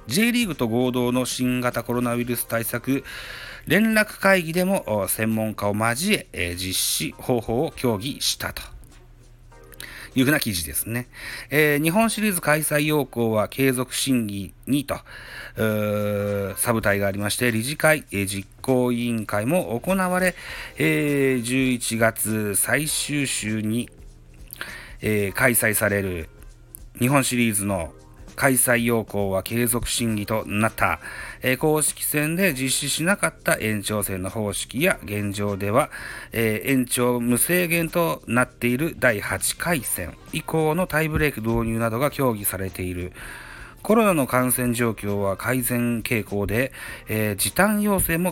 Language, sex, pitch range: Japanese, male, 105-155 Hz